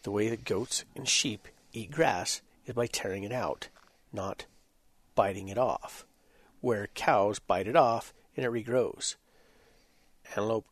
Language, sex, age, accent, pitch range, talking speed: English, male, 40-59, American, 100-145 Hz, 145 wpm